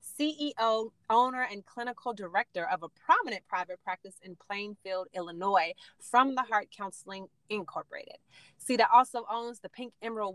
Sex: female